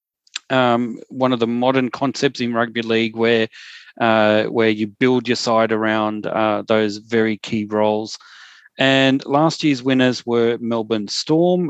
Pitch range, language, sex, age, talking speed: 115-140 Hz, English, male, 30-49, 150 wpm